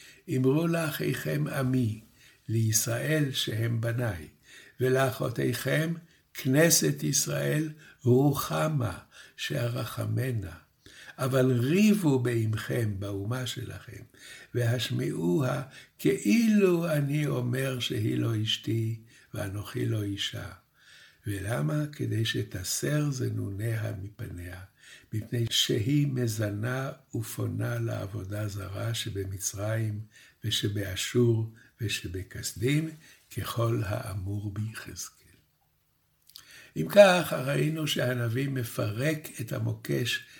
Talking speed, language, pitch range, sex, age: 75 wpm, Hebrew, 105-130 Hz, male, 60-79